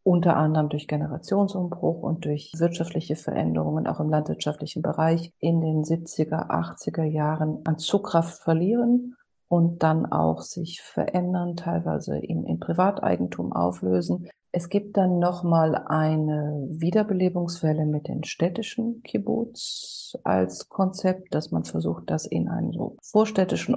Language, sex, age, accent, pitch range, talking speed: German, female, 40-59, German, 155-180 Hz, 125 wpm